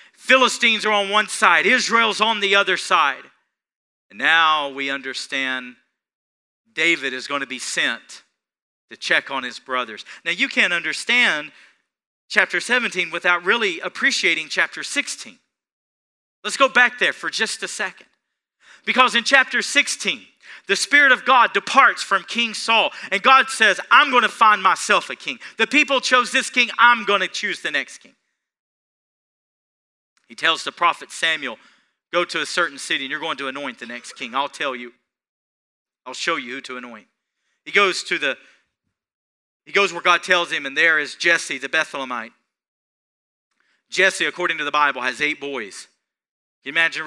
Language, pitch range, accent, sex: English, 135-215 Hz, American, male